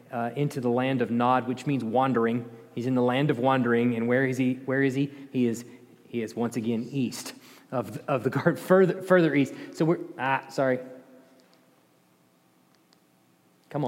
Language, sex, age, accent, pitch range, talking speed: English, male, 30-49, American, 125-175 Hz, 180 wpm